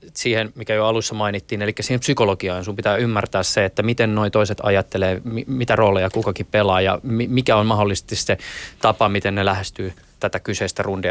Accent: native